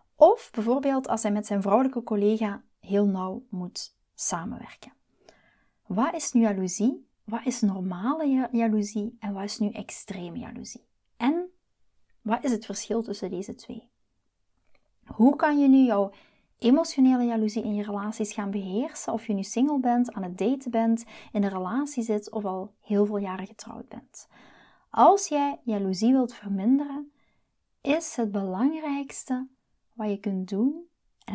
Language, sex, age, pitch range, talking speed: Dutch, female, 30-49, 205-255 Hz, 150 wpm